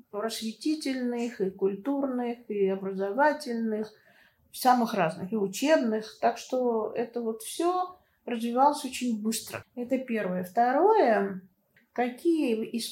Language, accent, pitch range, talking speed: Russian, native, 215-260 Hz, 100 wpm